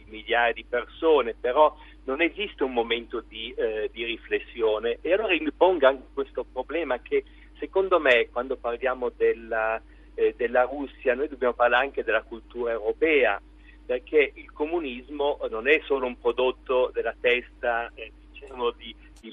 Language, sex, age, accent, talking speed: Italian, male, 50-69, native, 150 wpm